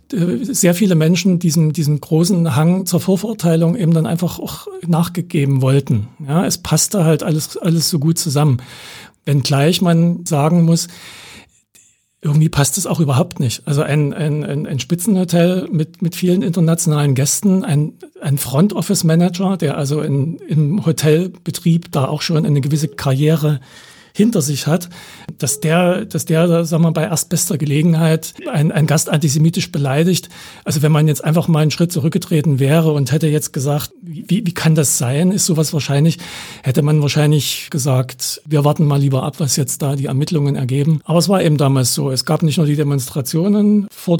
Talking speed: 170 wpm